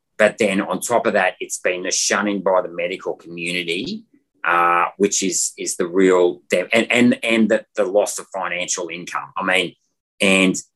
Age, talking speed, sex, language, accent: 30-49, 190 wpm, male, English, Australian